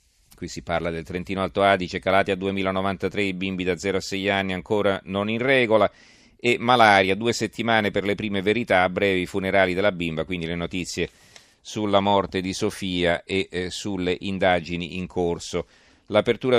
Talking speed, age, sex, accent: 170 wpm, 40-59, male, native